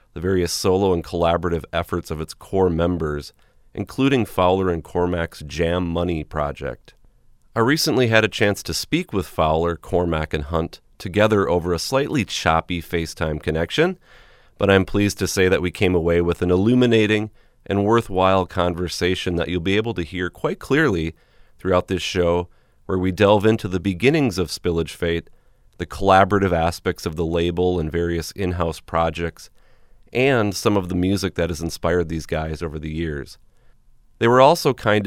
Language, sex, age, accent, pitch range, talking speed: English, male, 30-49, American, 85-100 Hz, 170 wpm